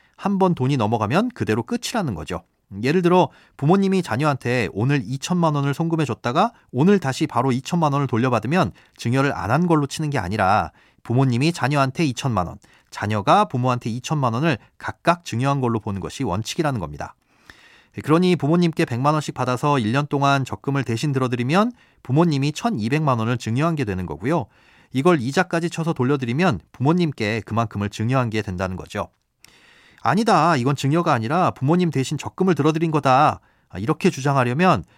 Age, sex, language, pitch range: 30-49, male, Korean, 120-165 Hz